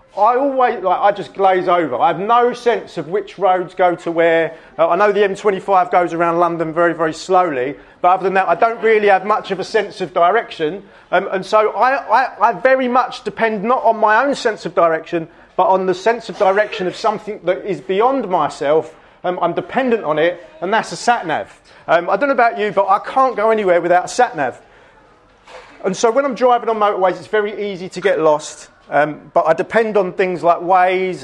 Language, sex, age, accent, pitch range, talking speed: English, male, 30-49, British, 170-220 Hz, 220 wpm